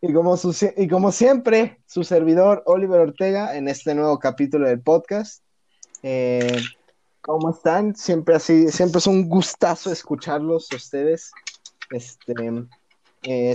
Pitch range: 125-165 Hz